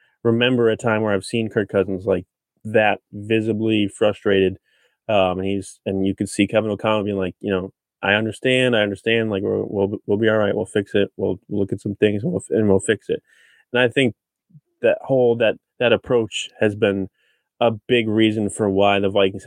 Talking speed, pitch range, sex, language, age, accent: 210 wpm, 100-115 Hz, male, English, 20-39, American